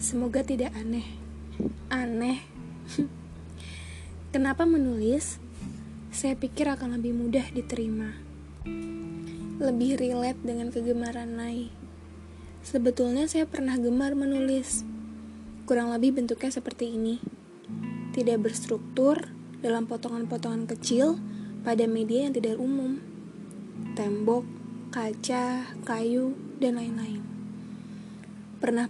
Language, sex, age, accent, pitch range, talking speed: Indonesian, female, 20-39, native, 200-245 Hz, 90 wpm